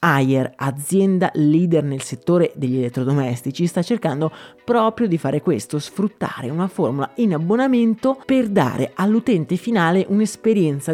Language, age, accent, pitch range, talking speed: Italian, 30-49, native, 150-215 Hz, 125 wpm